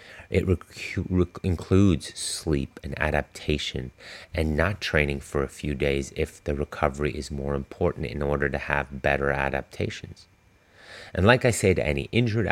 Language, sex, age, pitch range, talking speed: English, male, 30-49, 75-95 Hz, 160 wpm